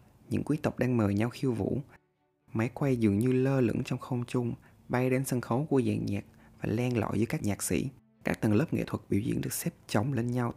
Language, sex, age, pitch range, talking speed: Vietnamese, male, 20-39, 110-130 Hz, 245 wpm